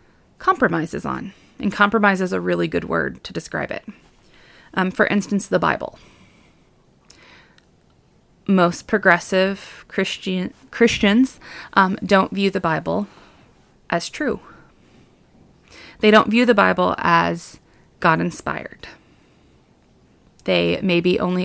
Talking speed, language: 105 wpm, English